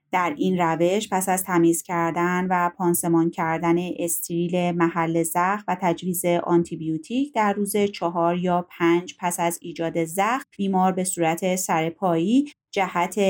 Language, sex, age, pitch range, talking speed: Persian, female, 30-49, 170-190 Hz, 140 wpm